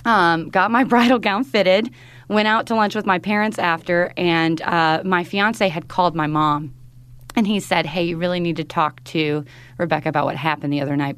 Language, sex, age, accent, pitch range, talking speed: English, female, 30-49, American, 145-170 Hz, 210 wpm